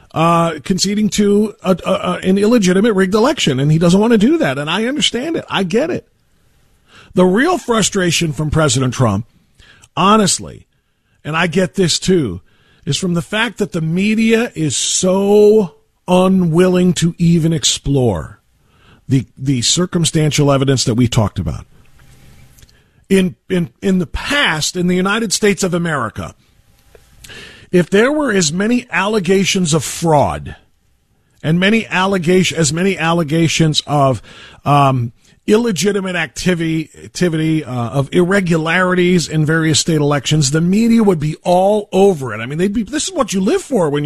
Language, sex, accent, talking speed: English, male, American, 155 wpm